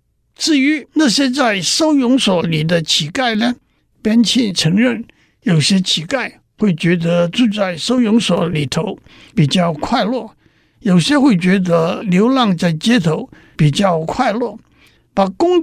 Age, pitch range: 60-79, 175-250 Hz